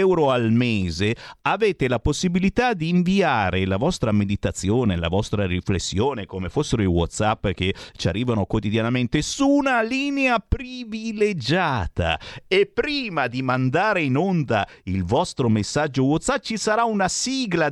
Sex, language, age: male, Italian, 50-69